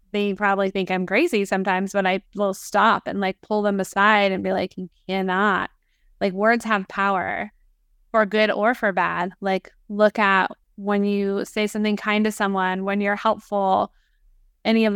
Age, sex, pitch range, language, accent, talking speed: 20-39, female, 195-220 Hz, English, American, 175 wpm